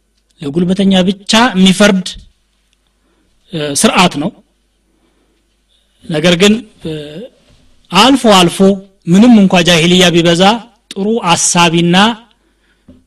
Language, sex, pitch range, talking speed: Amharic, male, 165-200 Hz, 70 wpm